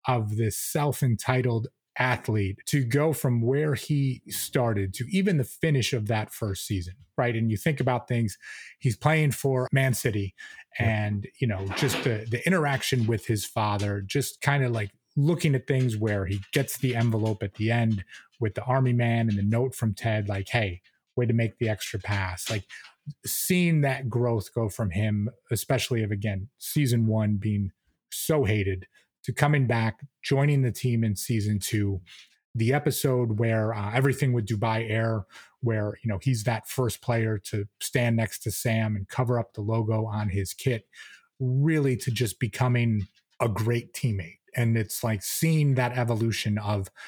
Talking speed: 175 wpm